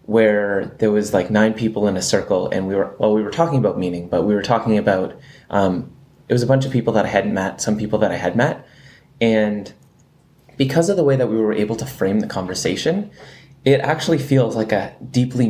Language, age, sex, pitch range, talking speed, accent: English, 20-39, male, 105-140 Hz, 230 wpm, American